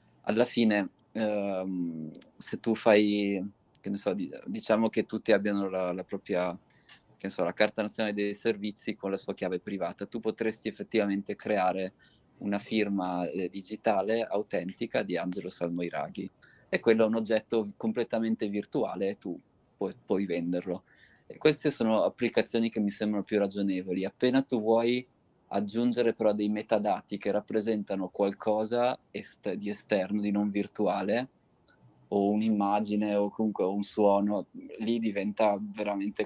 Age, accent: 20-39, native